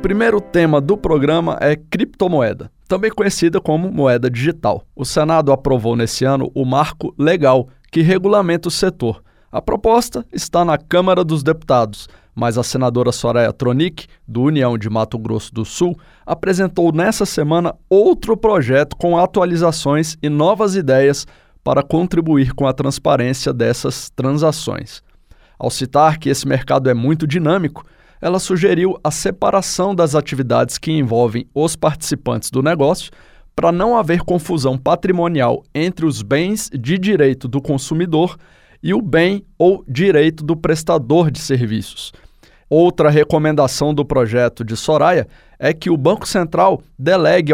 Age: 20-39